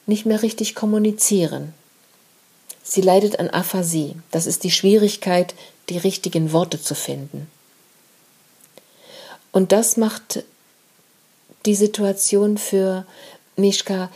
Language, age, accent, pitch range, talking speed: German, 50-69, German, 175-210 Hz, 100 wpm